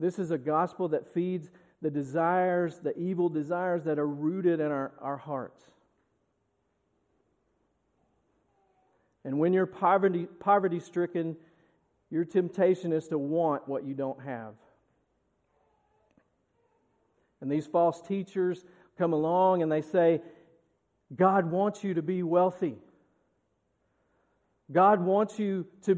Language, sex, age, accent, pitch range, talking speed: English, male, 50-69, American, 155-190 Hz, 120 wpm